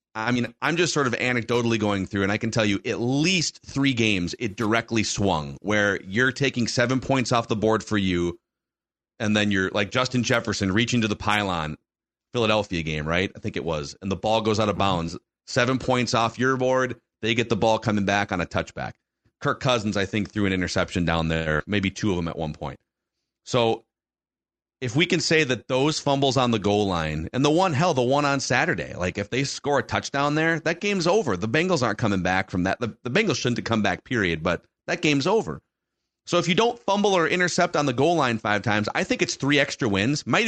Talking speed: 230 wpm